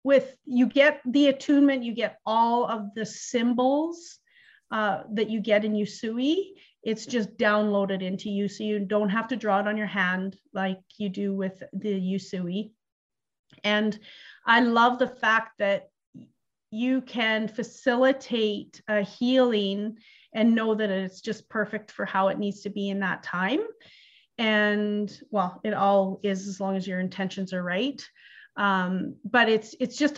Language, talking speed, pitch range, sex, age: English, 160 wpm, 195-245 Hz, female, 30-49